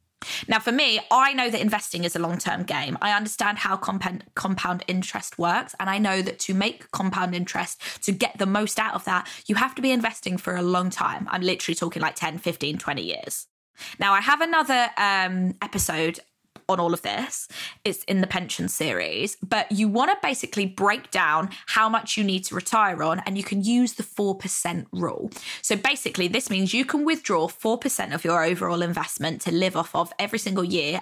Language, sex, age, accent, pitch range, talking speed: English, female, 20-39, British, 180-225 Hz, 200 wpm